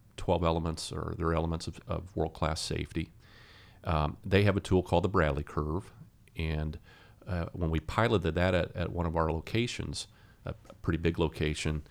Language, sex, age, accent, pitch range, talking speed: English, male, 40-59, American, 80-105 Hz, 170 wpm